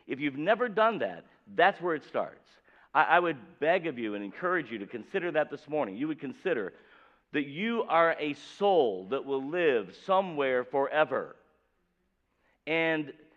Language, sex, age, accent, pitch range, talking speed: English, male, 50-69, American, 130-195 Hz, 165 wpm